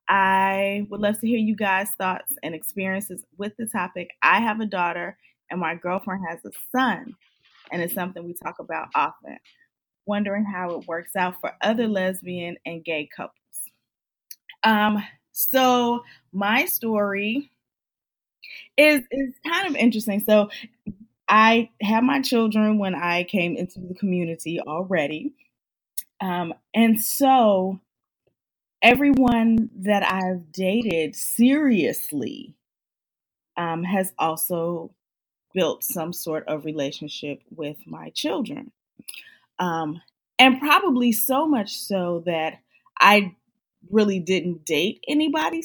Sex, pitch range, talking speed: female, 175-235 Hz, 120 wpm